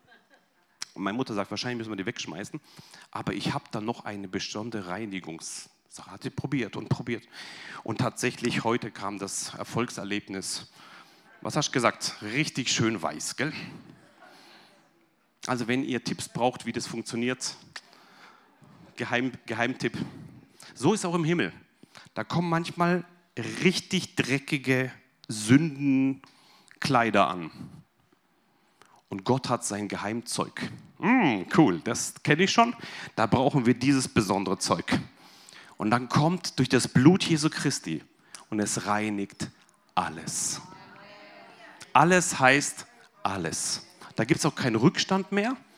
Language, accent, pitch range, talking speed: German, German, 115-160 Hz, 125 wpm